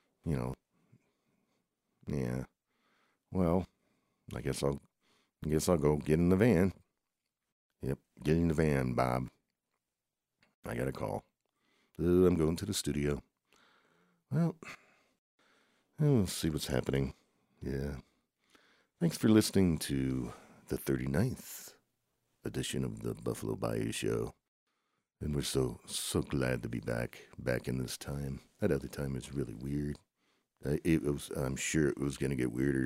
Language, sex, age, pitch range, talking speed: English, male, 60-79, 65-75 Hz, 135 wpm